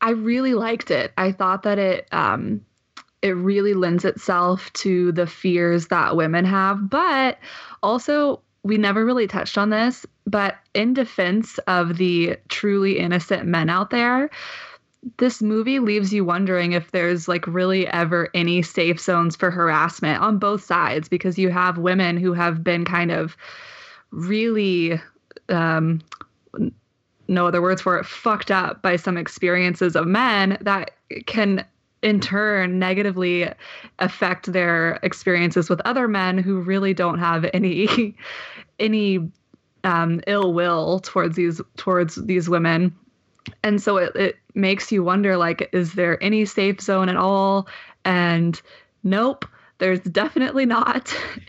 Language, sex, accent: English, female, American